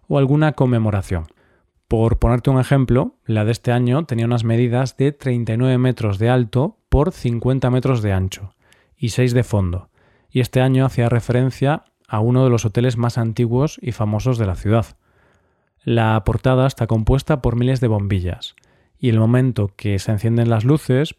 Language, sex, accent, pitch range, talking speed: Spanish, male, Spanish, 110-135 Hz, 175 wpm